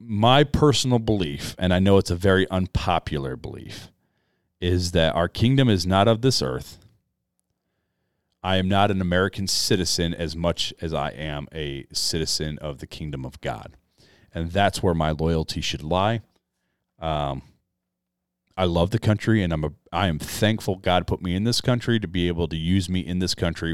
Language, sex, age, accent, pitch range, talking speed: English, male, 30-49, American, 75-95 Hz, 175 wpm